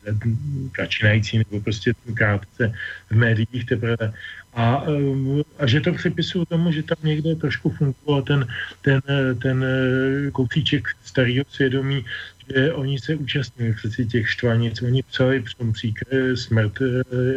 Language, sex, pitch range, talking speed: Slovak, male, 115-140 Hz, 115 wpm